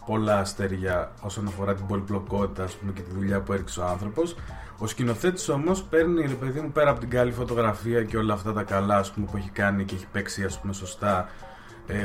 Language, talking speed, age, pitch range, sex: Greek, 210 wpm, 30-49, 95-115 Hz, male